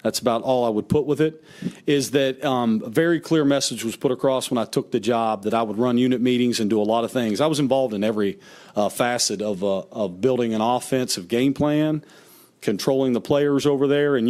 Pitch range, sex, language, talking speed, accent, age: 115-140 Hz, male, English, 235 wpm, American, 40-59